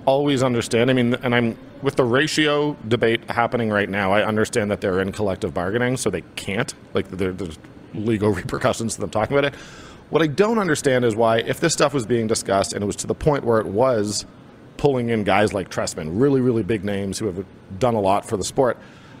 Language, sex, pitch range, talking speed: English, male, 105-130 Hz, 220 wpm